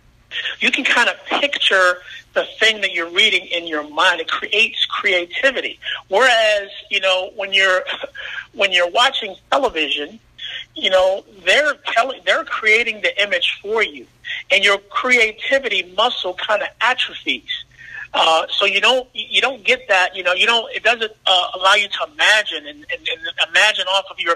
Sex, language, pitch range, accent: male, English, 185-255 Hz, American